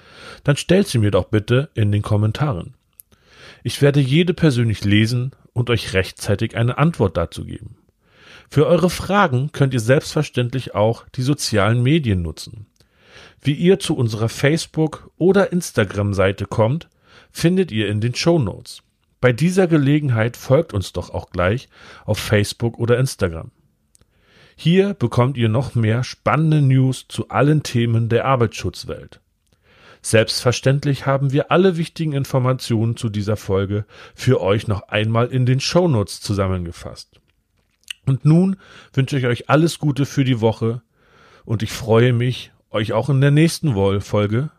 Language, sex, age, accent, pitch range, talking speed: German, male, 40-59, German, 105-145 Hz, 145 wpm